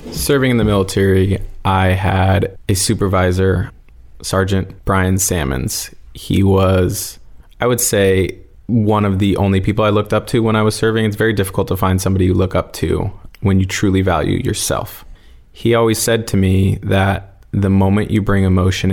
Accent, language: American, English